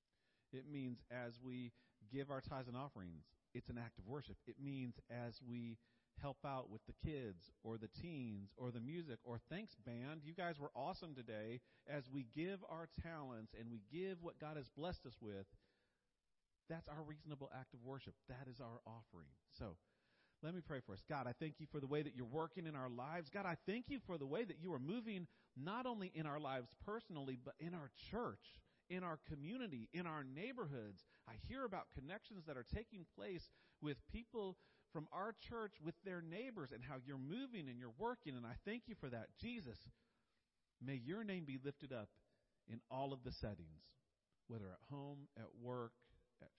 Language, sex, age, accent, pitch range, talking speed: English, male, 40-59, American, 115-160 Hz, 200 wpm